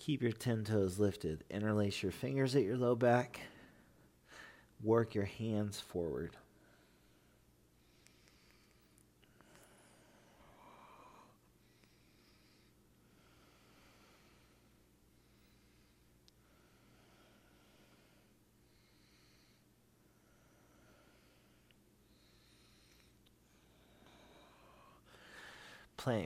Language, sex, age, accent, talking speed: English, male, 40-59, American, 40 wpm